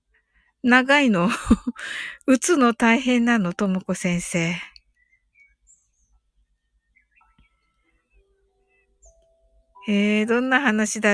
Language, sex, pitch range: Japanese, female, 210-350 Hz